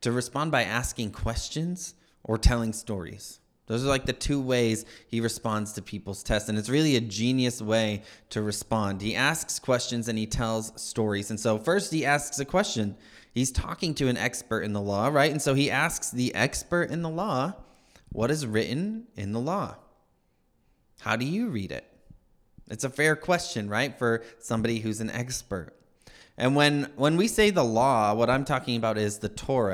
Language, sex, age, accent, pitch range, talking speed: English, male, 20-39, American, 110-135 Hz, 190 wpm